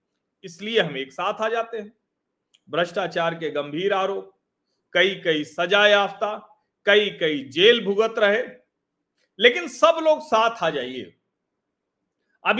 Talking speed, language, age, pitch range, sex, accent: 130 wpm, Hindi, 40-59, 180-265 Hz, male, native